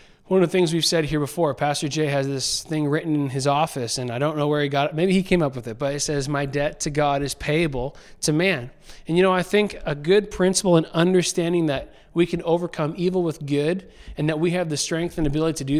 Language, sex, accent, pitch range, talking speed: English, male, American, 145-180 Hz, 260 wpm